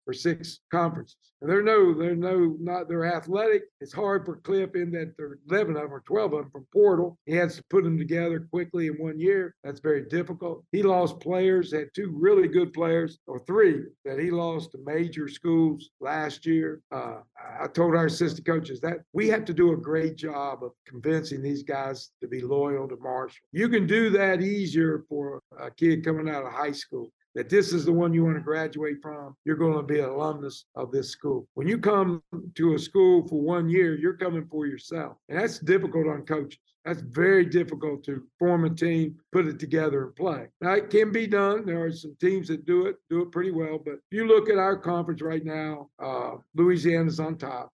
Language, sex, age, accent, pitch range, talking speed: English, male, 60-79, American, 155-185 Hz, 215 wpm